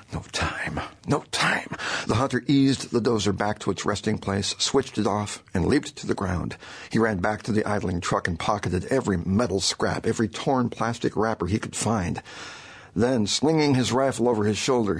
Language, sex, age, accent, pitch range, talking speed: English, male, 60-79, American, 95-115 Hz, 190 wpm